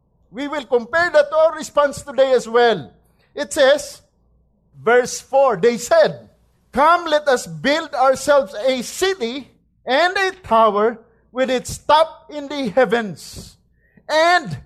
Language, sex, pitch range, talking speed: English, male, 220-270 Hz, 135 wpm